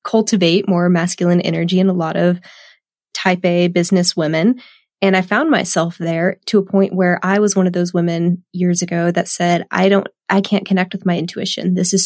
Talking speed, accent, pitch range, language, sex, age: 205 wpm, American, 175-195 Hz, English, female, 20-39